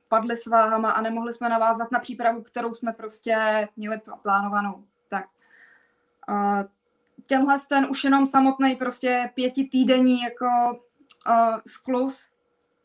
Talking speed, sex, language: 115 wpm, female, Czech